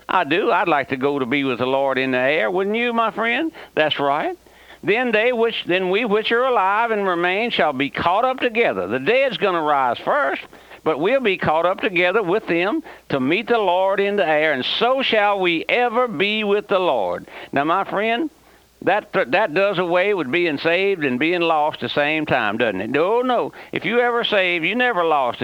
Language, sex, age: English, male, 60-79